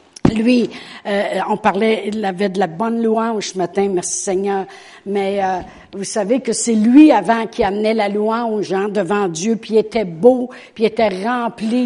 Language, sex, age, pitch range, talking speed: French, female, 60-79, 205-255 Hz, 185 wpm